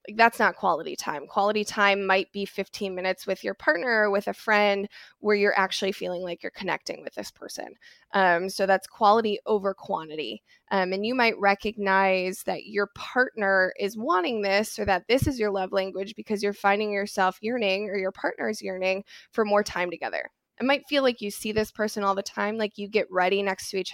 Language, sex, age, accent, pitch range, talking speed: English, female, 20-39, American, 190-215 Hz, 205 wpm